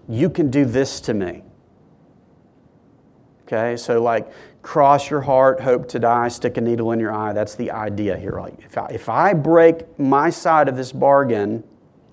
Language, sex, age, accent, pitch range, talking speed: English, male, 40-59, American, 130-165 Hz, 180 wpm